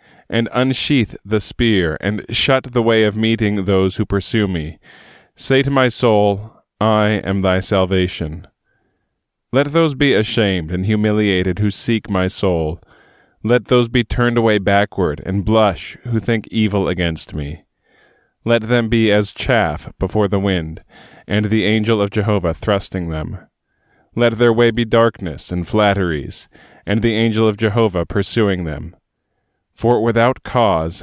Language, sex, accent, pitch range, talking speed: English, male, American, 95-115 Hz, 150 wpm